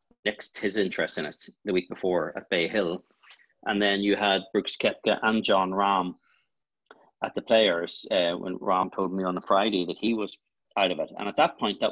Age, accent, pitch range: 40-59, Irish, 100-125 Hz